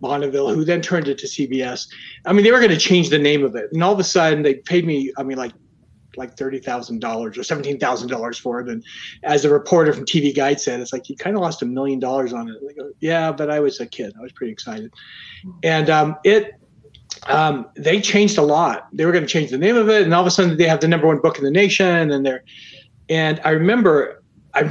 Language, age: English, 40-59